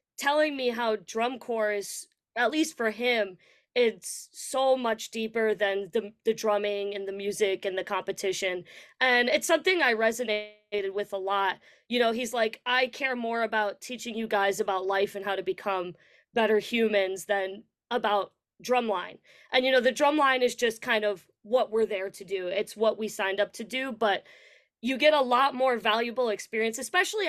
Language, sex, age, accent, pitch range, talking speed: English, female, 20-39, American, 205-255 Hz, 185 wpm